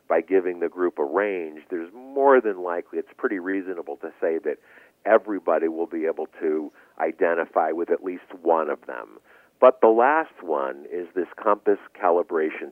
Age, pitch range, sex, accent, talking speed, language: 50-69, 340-430 Hz, male, American, 170 wpm, English